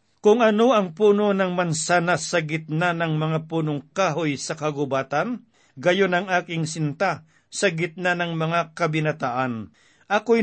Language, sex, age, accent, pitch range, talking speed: Filipino, male, 50-69, native, 155-195 Hz, 140 wpm